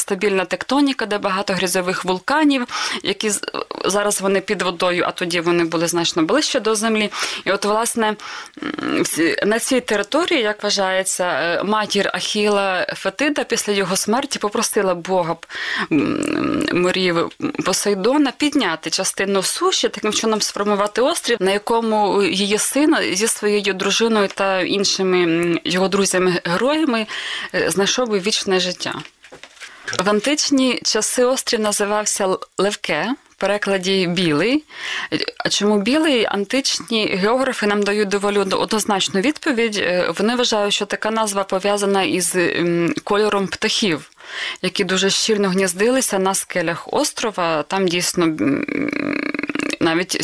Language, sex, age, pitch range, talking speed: Ukrainian, female, 20-39, 185-225 Hz, 115 wpm